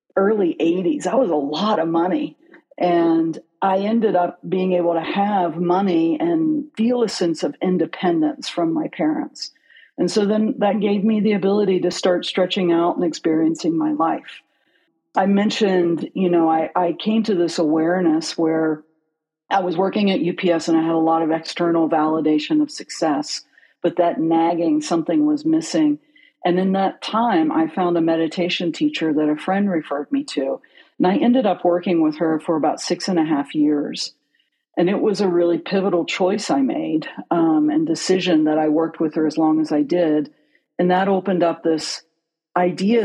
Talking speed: 185 wpm